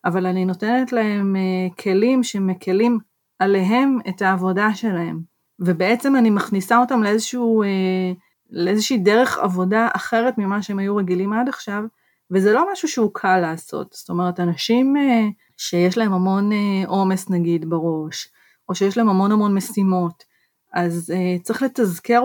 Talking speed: 130 wpm